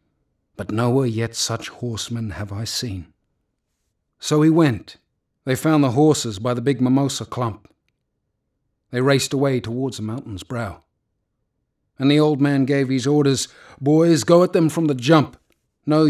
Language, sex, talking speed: English, male, 155 wpm